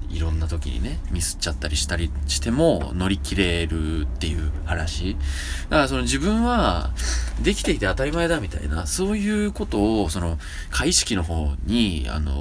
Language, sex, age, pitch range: Japanese, male, 20-39, 75-110 Hz